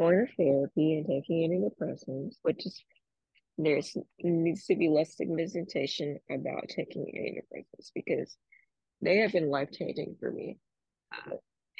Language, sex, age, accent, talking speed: English, female, 20-39, American, 120 wpm